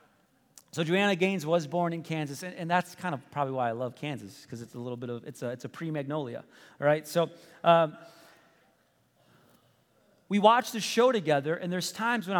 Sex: male